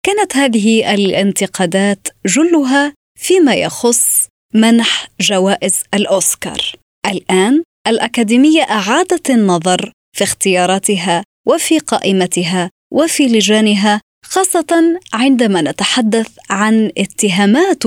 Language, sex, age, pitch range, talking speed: Arabic, female, 20-39, 190-260 Hz, 80 wpm